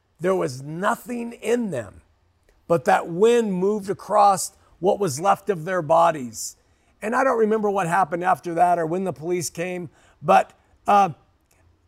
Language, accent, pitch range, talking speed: English, American, 130-205 Hz, 155 wpm